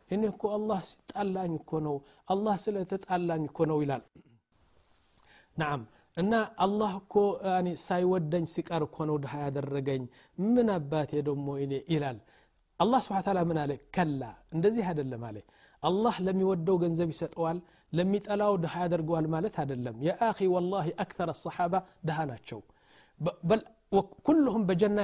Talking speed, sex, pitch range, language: 110 wpm, male, 145-190 Hz, Amharic